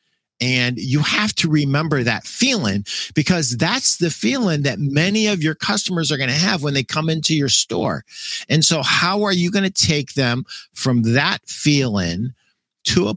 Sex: male